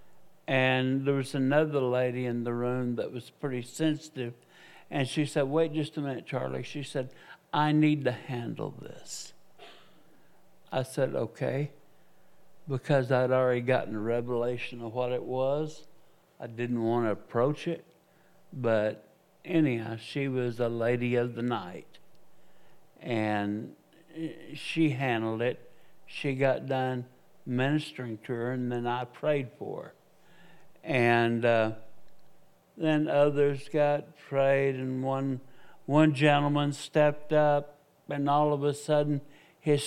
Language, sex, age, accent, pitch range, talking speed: English, male, 60-79, American, 120-150 Hz, 135 wpm